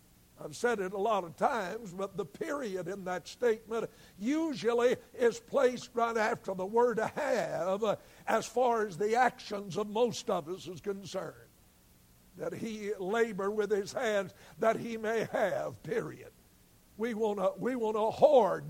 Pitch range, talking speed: 210-285 Hz, 155 wpm